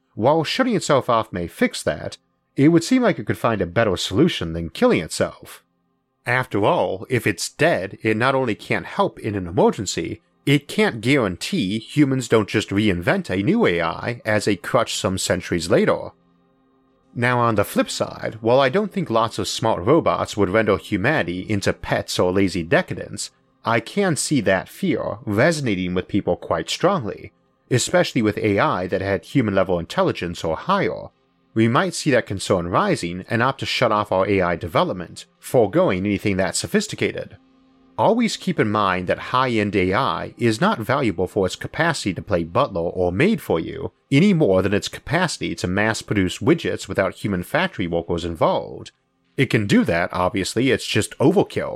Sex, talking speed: male, 170 wpm